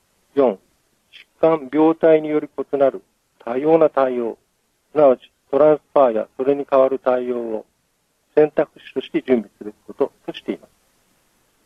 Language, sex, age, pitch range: Japanese, male, 40-59, 120-160 Hz